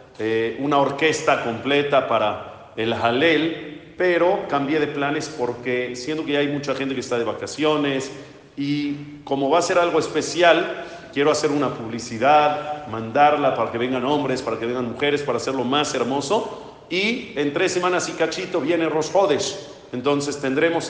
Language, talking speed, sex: Spanish, 160 wpm, male